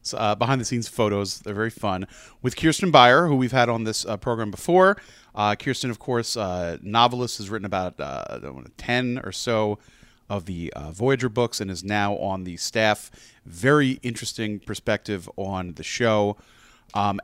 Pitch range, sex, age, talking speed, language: 100-135 Hz, male, 30-49, 185 wpm, English